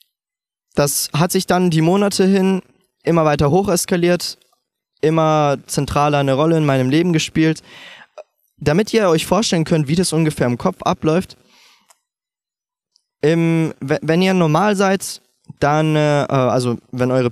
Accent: German